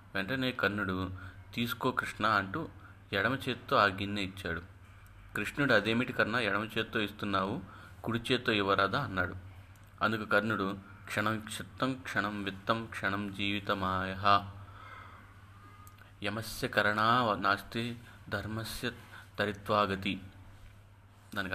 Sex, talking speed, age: male, 90 wpm, 30-49